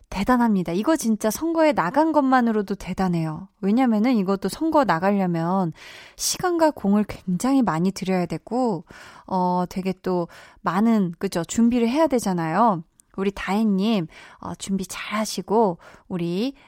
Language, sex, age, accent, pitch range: Korean, female, 20-39, native, 190-250 Hz